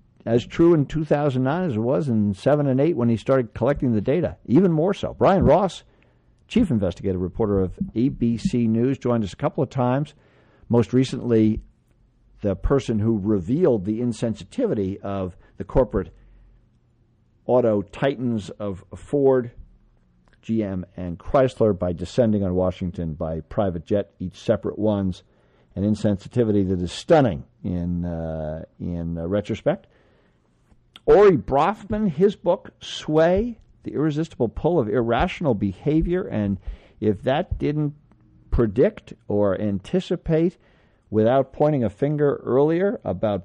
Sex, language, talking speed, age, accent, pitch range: male, English, 135 wpm, 50-69, American, 100-140 Hz